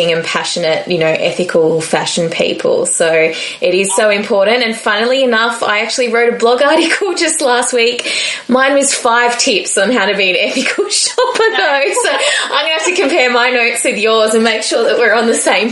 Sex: female